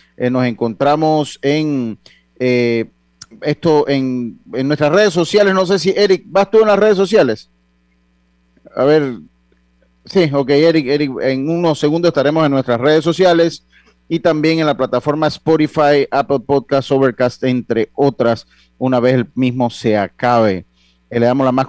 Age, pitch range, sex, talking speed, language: 40-59, 125-165 Hz, male, 160 wpm, Spanish